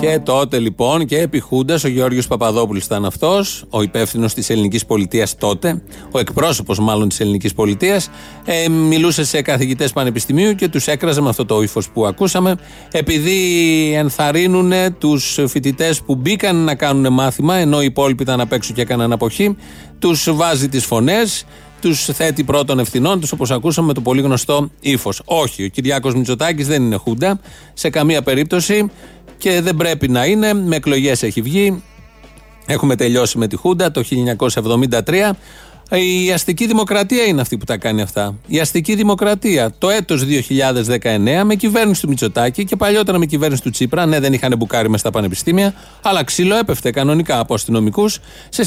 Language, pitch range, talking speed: Greek, 120-175 Hz, 165 wpm